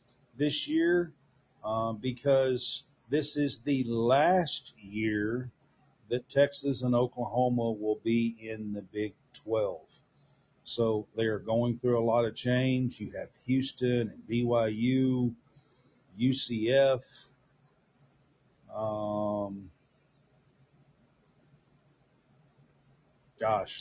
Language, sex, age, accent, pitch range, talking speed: English, male, 50-69, American, 115-140 Hz, 90 wpm